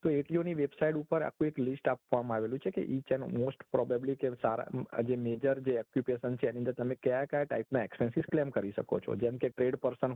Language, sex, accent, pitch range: Gujarati, male, native, 115-135 Hz